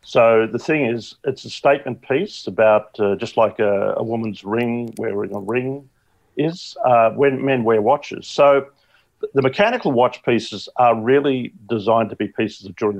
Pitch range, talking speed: 100-125 Hz, 175 wpm